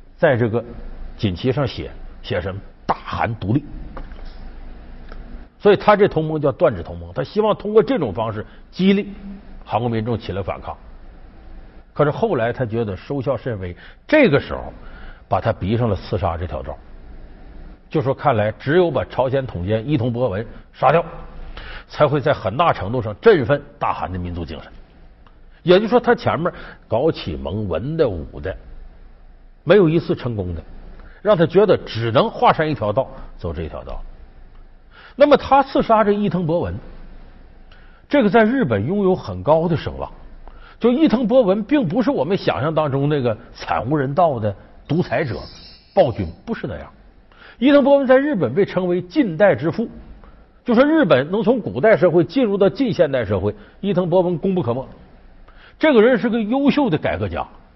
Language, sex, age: Chinese, male, 50-69